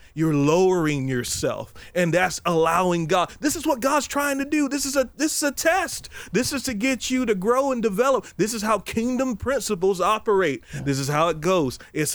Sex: male